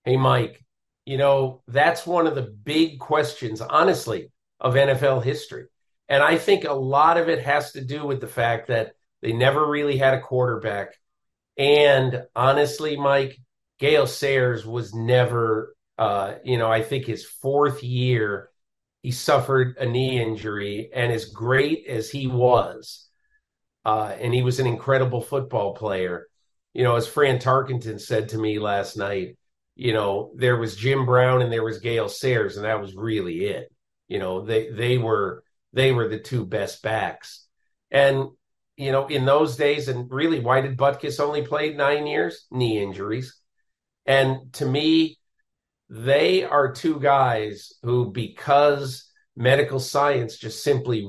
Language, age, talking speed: English, 50-69, 160 wpm